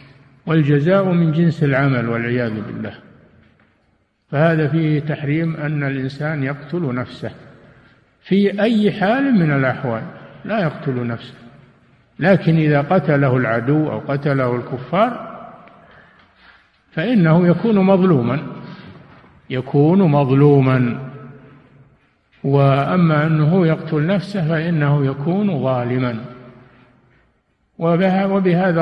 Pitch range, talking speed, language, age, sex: 130-165 Hz, 85 wpm, Arabic, 60-79, male